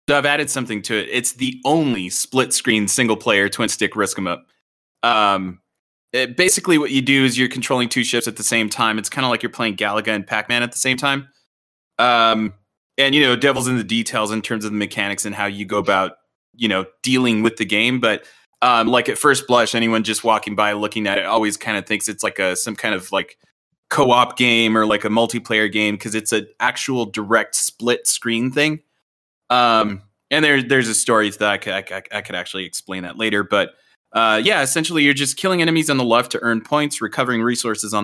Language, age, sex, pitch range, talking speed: English, 20-39, male, 105-130 Hz, 215 wpm